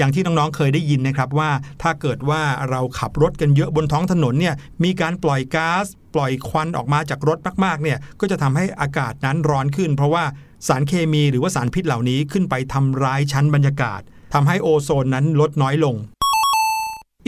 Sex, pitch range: male, 140-185 Hz